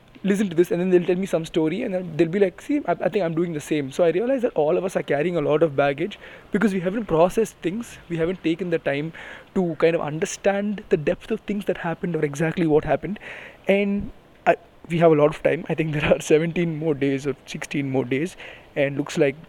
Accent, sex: native, male